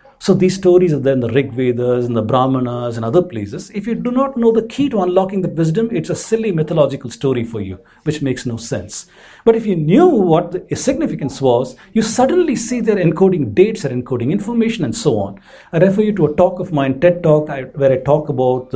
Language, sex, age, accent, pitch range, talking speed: English, male, 50-69, Indian, 140-200 Hz, 235 wpm